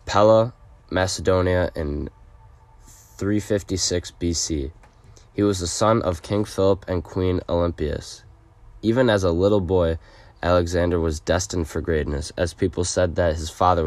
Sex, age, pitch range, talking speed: male, 20-39, 85-100 Hz, 135 wpm